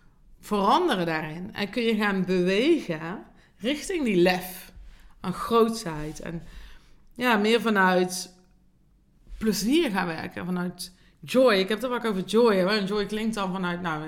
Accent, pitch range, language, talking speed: Dutch, 175-220 Hz, Dutch, 140 wpm